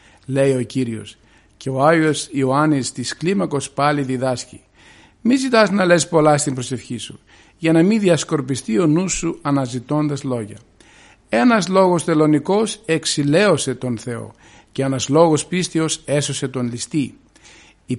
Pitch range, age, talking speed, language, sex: 125-160 Hz, 50-69, 140 wpm, Greek, male